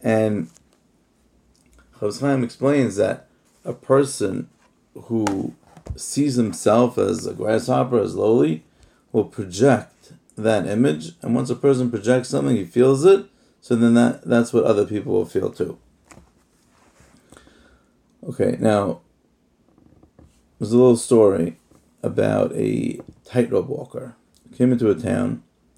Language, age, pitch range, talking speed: English, 30-49, 110-130 Hz, 120 wpm